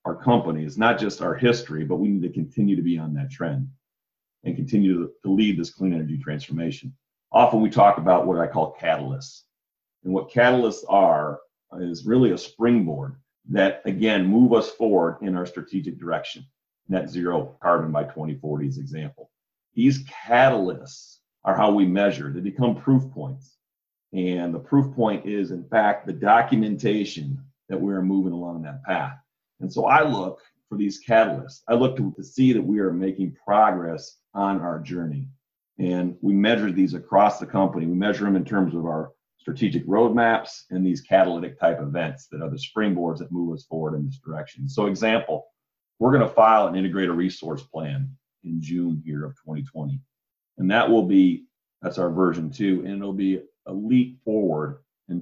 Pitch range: 85-120 Hz